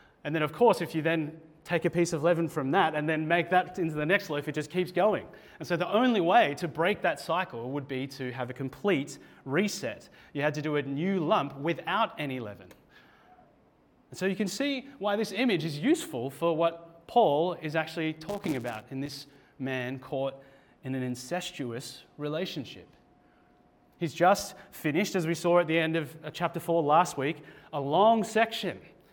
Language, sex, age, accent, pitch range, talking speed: English, male, 30-49, Australian, 145-180 Hz, 195 wpm